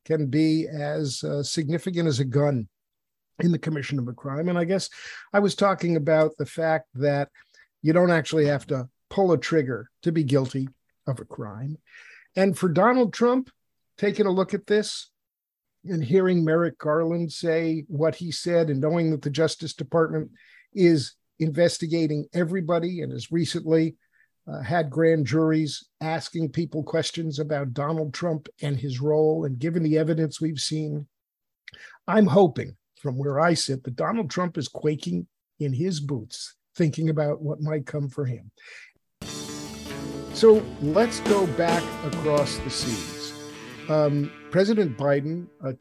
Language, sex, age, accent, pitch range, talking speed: English, male, 50-69, American, 140-170 Hz, 155 wpm